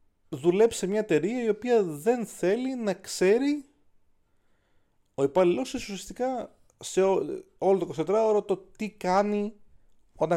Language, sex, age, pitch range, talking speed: Greek, male, 30-49, 115-195 Hz, 135 wpm